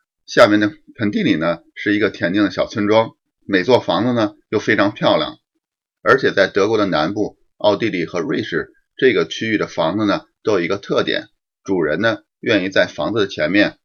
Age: 30-49